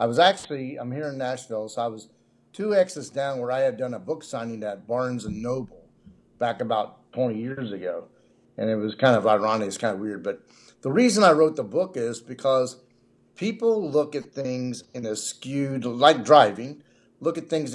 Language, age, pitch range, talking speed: English, 50-69, 120-165 Hz, 200 wpm